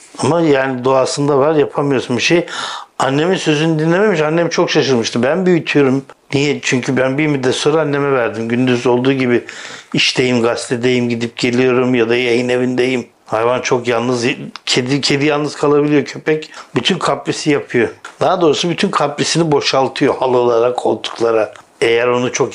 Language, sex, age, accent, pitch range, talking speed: Turkish, male, 60-79, native, 120-150 Hz, 150 wpm